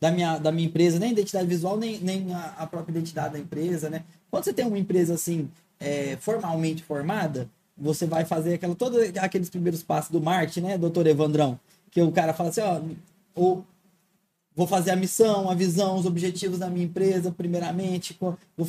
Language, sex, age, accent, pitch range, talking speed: Portuguese, male, 20-39, Brazilian, 165-200 Hz, 175 wpm